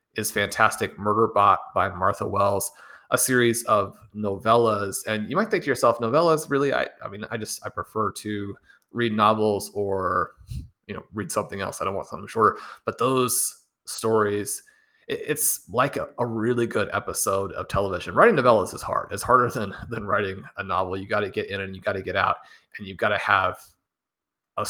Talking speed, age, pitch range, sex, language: 195 wpm, 30-49, 100-115 Hz, male, English